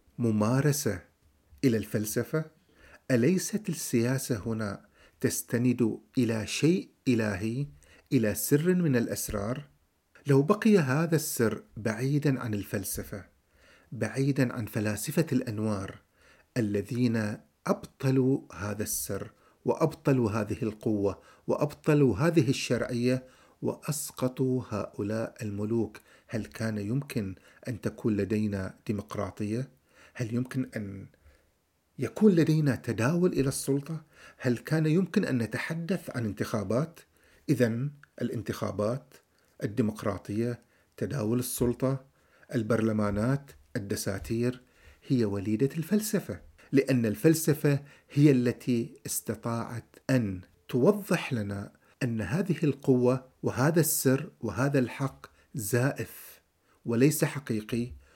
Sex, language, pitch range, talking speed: male, Arabic, 110-140 Hz, 90 wpm